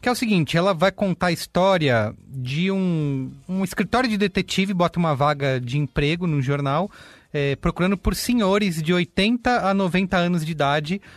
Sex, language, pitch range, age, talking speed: male, Portuguese, 130-180 Hz, 30-49, 175 wpm